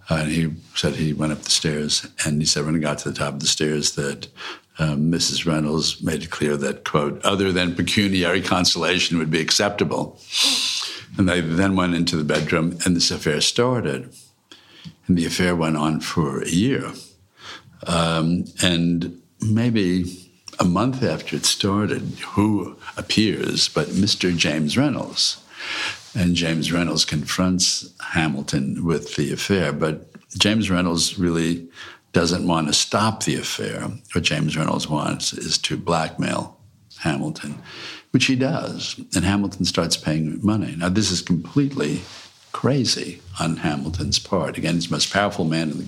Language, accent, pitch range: English, American, 80-95 Hz